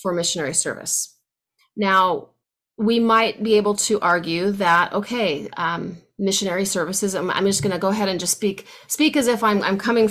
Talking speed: 185 wpm